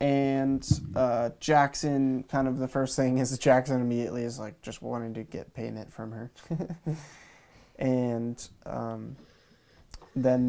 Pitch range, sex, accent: 115-130 Hz, male, American